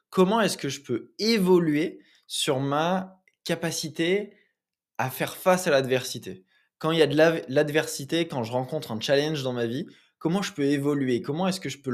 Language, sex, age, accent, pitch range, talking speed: French, male, 20-39, French, 125-160 Hz, 185 wpm